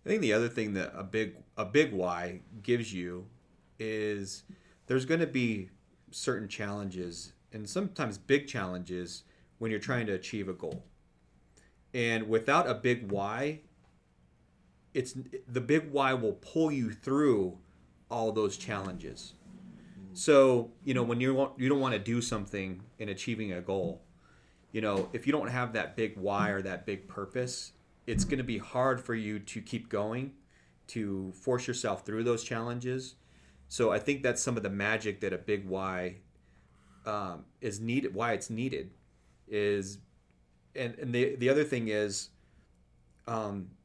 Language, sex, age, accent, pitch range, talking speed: English, male, 30-49, American, 95-130 Hz, 160 wpm